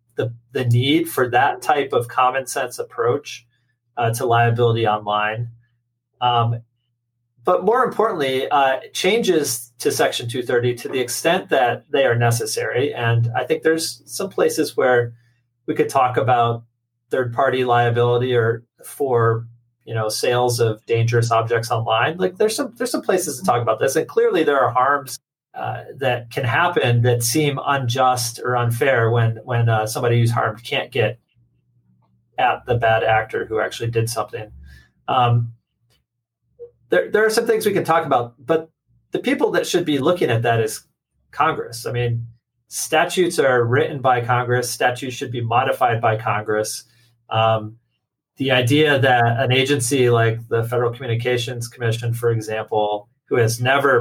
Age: 30-49